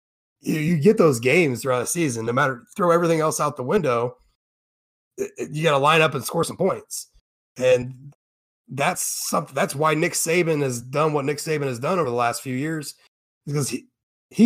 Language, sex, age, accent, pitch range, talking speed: English, male, 30-49, American, 130-170 Hz, 190 wpm